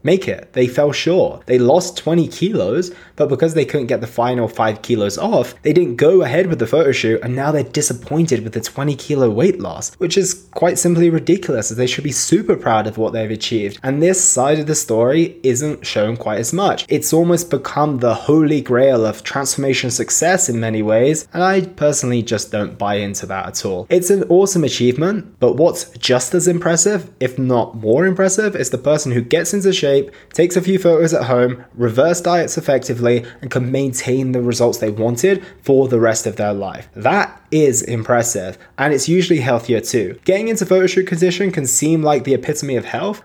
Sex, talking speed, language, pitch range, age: male, 205 wpm, English, 120-175 Hz, 20-39